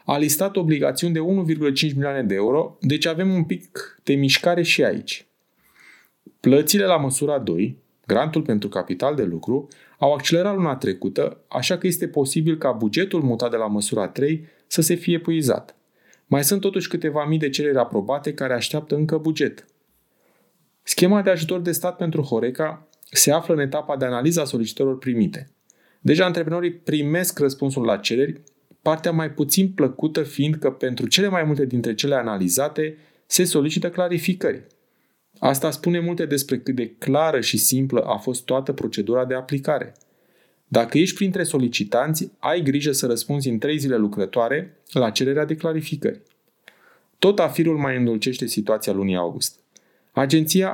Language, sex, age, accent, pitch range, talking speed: Romanian, male, 30-49, native, 130-165 Hz, 155 wpm